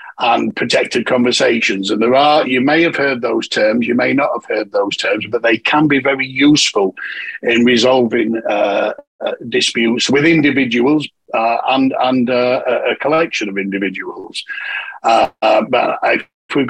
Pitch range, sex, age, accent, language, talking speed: 115-165 Hz, male, 50-69, British, English, 160 wpm